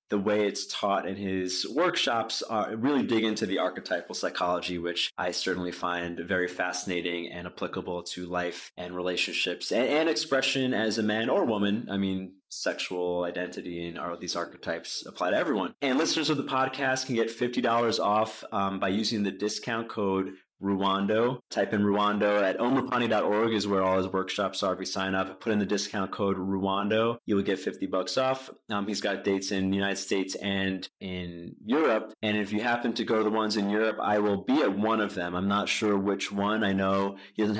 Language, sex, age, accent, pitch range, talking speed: English, male, 20-39, American, 95-110 Hz, 200 wpm